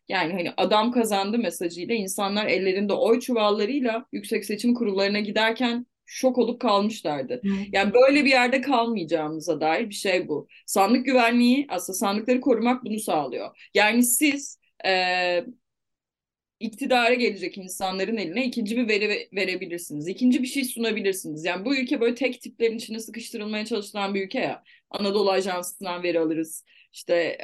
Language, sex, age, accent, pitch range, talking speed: Turkish, female, 30-49, native, 180-240 Hz, 140 wpm